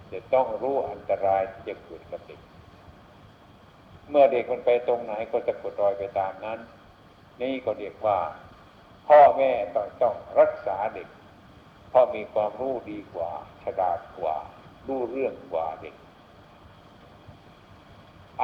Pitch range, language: 100-120 Hz, Thai